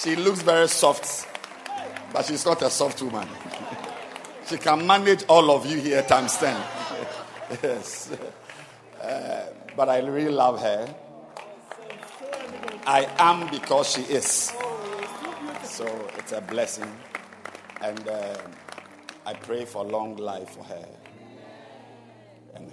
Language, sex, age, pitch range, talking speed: English, male, 50-69, 105-155 Hz, 120 wpm